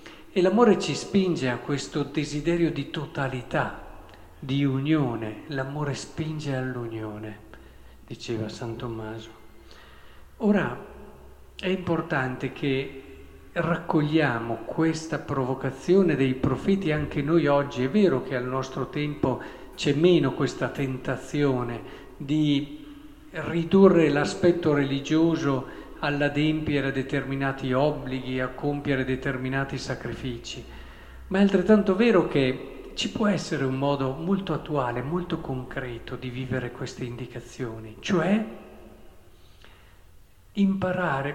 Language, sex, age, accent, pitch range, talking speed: Italian, male, 50-69, native, 125-170 Hz, 100 wpm